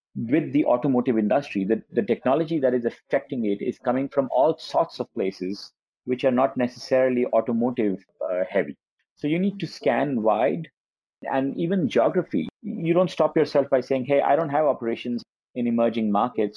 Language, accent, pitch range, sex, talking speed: English, Indian, 110-140 Hz, male, 175 wpm